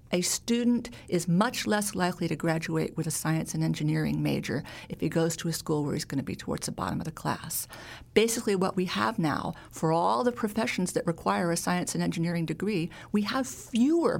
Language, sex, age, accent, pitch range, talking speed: English, female, 50-69, American, 170-210 Hz, 210 wpm